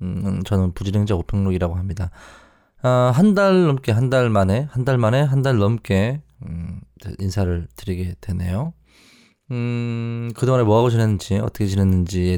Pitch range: 95-125 Hz